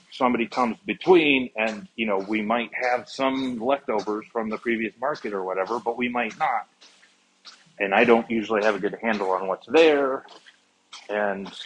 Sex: male